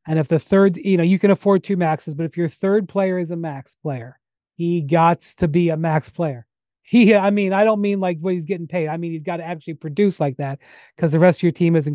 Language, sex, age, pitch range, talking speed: English, male, 30-49, 165-210 Hz, 270 wpm